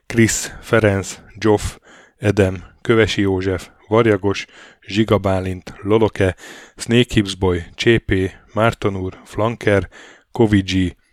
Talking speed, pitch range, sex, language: 80 wpm, 95-110 Hz, male, Hungarian